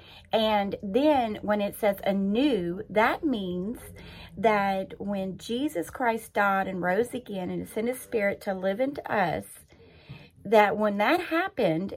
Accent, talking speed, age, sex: American, 140 wpm, 40-59, female